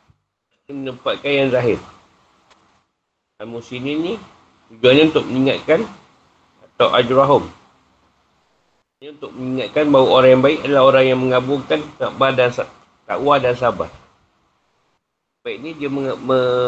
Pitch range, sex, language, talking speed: 110-135 Hz, male, Malay, 110 wpm